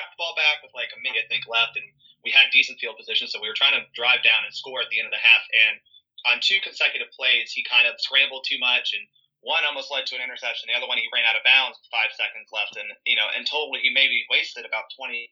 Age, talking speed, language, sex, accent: 30-49, 280 wpm, English, male, American